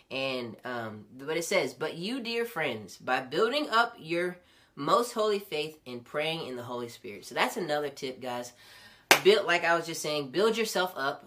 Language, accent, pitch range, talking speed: English, American, 140-195 Hz, 190 wpm